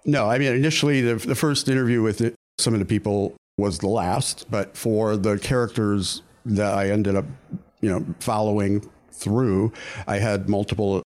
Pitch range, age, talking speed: 95-115 Hz, 50-69, 175 wpm